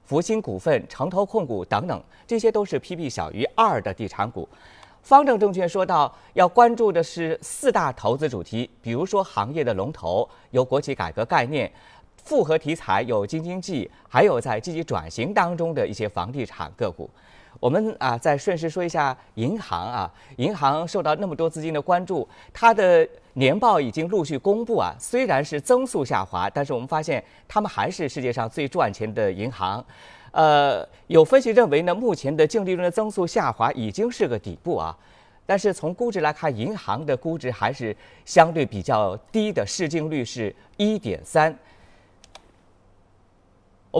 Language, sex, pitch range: Chinese, male, 120-185 Hz